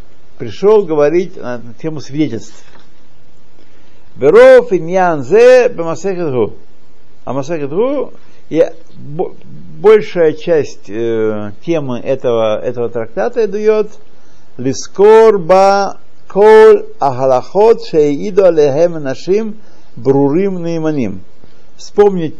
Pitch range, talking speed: 125-190 Hz, 40 wpm